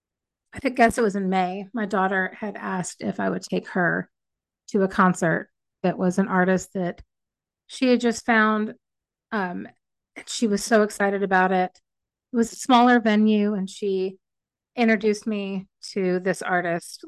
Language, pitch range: English, 185-215 Hz